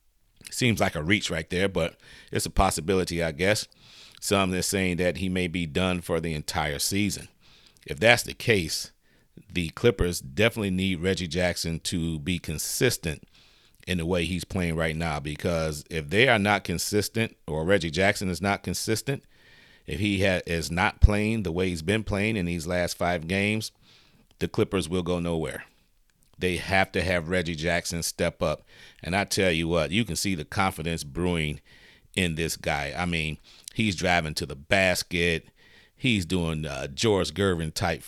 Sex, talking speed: male, 175 wpm